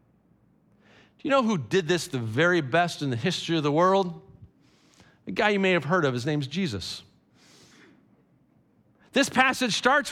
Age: 40-59